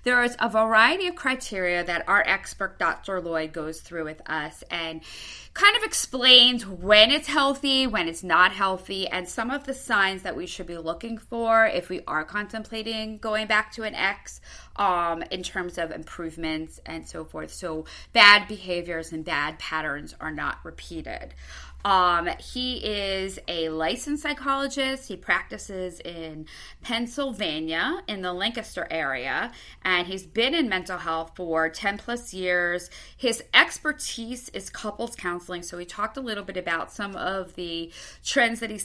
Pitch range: 160-215 Hz